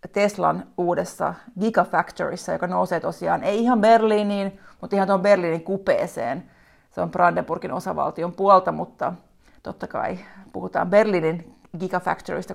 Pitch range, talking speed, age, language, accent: 180-230 Hz, 120 wpm, 30-49, Finnish, native